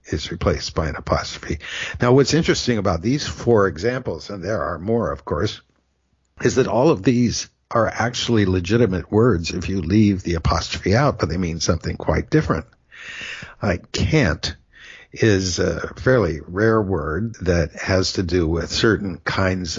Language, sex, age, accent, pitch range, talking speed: English, male, 60-79, American, 90-115 Hz, 165 wpm